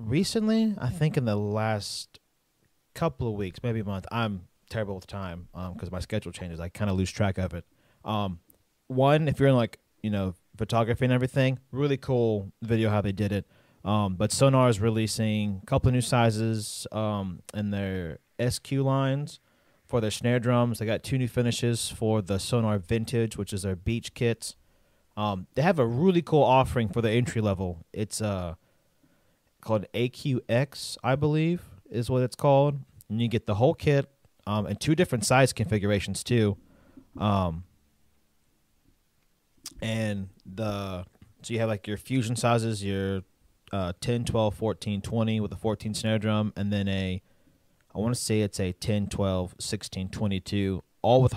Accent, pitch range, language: American, 100-120 Hz, English